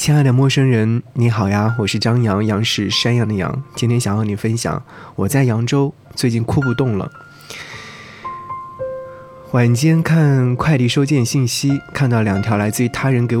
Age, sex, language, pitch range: 20-39, male, Chinese, 110-135 Hz